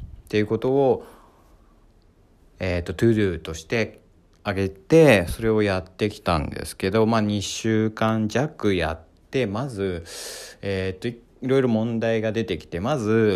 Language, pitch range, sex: Japanese, 90-115 Hz, male